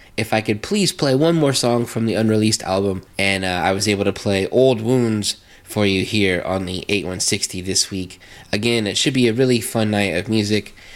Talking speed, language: 215 wpm, English